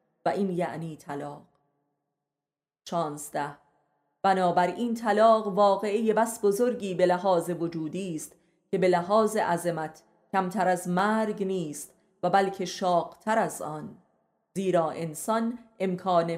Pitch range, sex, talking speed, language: 165-210 Hz, female, 115 wpm, Persian